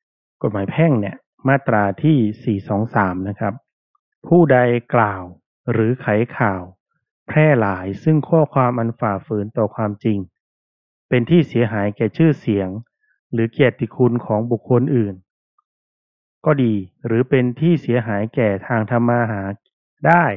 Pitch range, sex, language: 105-135 Hz, male, Thai